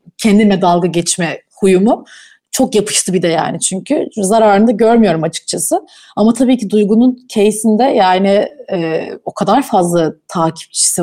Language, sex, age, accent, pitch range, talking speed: Turkish, female, 30-49, native, 175-225 Hz, 135 wpm